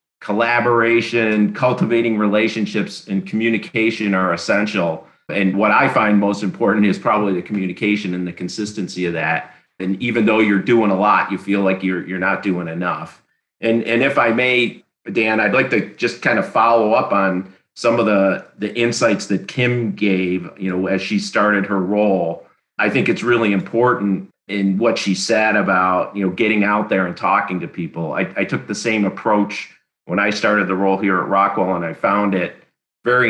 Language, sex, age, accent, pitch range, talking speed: English, male, 40-59, American, 95-110 Hz, 190 wpm